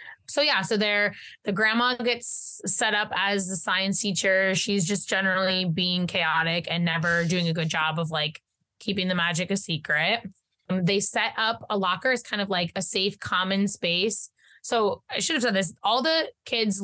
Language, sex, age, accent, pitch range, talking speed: English, female, 20-39, American, 175-210 Hz, 185 wpm